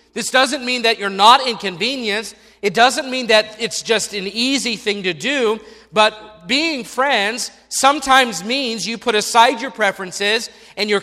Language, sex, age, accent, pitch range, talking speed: English, male, 40-59, American, 200-250 Hz, 165 wpm